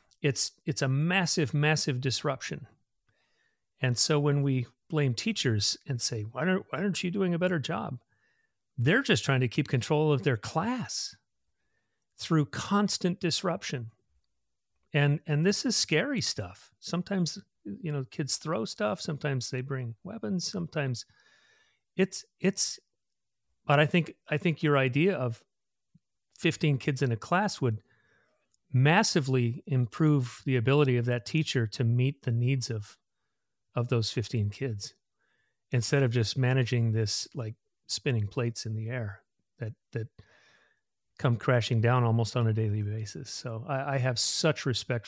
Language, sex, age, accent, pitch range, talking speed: English, male, 40-59, American, 115-155 Hz, 150 wpm